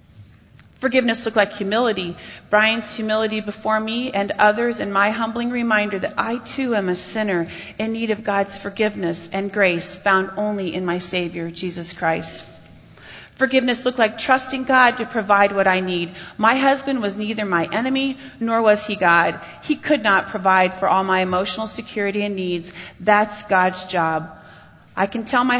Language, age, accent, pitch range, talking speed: English, 30-49, American, 185-230 Hz, 170 wpm